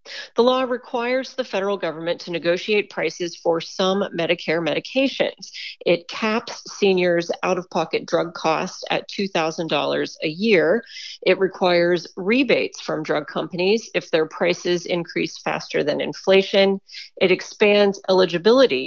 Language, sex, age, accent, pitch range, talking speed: English, female, 40-59, American, 175-225 Hz, 130 wpm